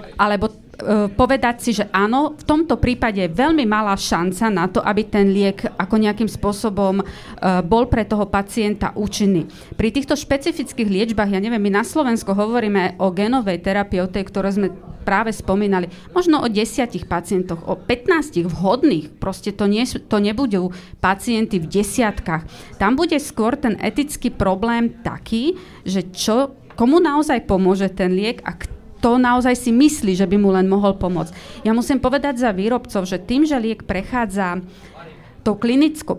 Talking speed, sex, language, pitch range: 160 wpm, female, Slovak, 195-245 Hz